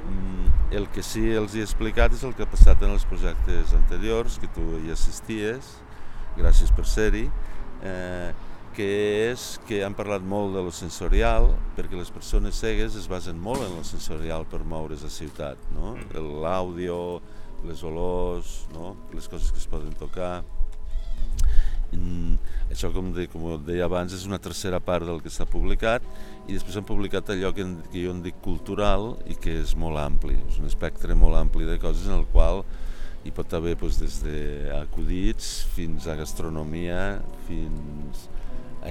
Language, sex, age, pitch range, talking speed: Spanish, male, 60-79, 80-95 Hz, 175 wpm